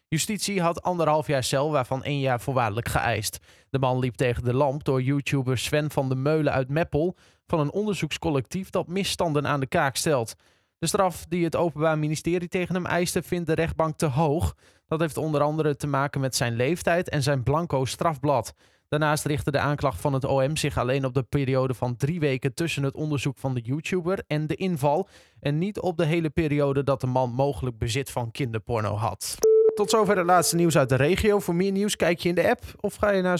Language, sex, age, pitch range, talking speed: Dutch, male, 20-39, 135-175 Hz, 210 wpm